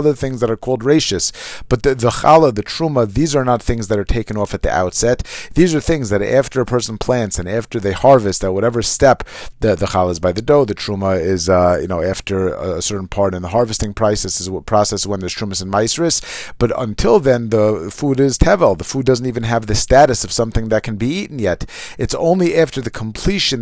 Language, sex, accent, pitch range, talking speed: English, male, American, 105-135 Hz, 240 wpm